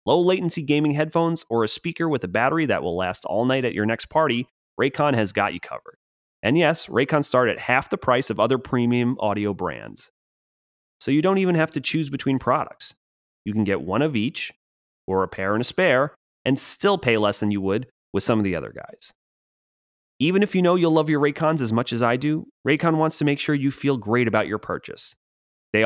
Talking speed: 220 wpm